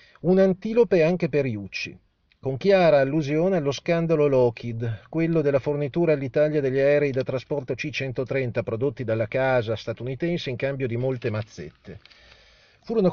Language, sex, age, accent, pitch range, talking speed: Italian, male, 40-59, native, 125-170 Hz, 135 wpm